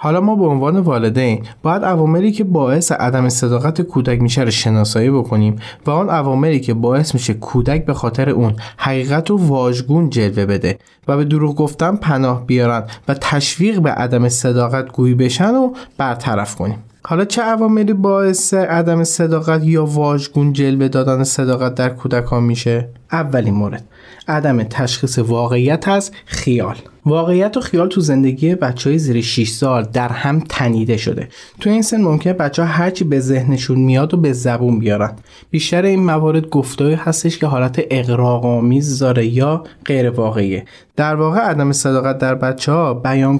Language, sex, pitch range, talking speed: Persian, male, 120-160 Hz, 160 wpm